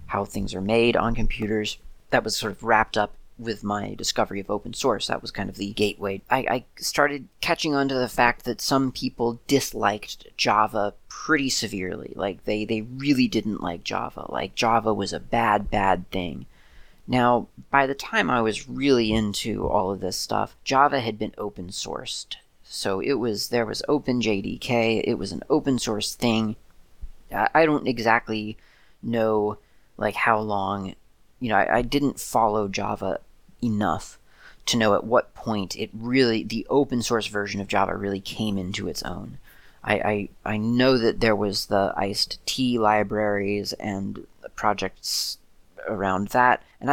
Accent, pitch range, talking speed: American, 100-120 Hz, 170 wpm